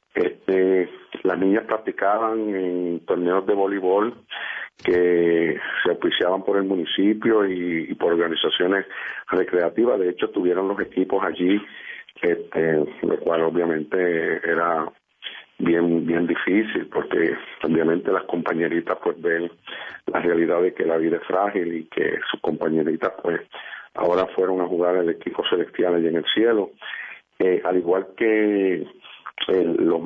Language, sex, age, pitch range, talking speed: Spanish, male, 50-69, 85-110 Hz, 140 wpm